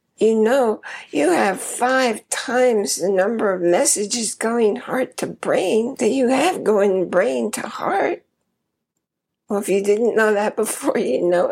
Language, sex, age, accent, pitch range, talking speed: English, female, 60-79, American, 185-245 Hz, 155 wpm